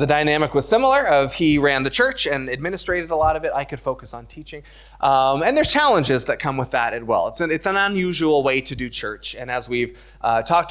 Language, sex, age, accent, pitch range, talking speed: English, male, 20-39, American, 130-165 Hz, 240 wpm